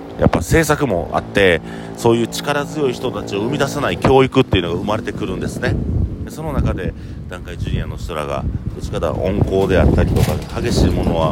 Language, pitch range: Japanese, 80-110 Hz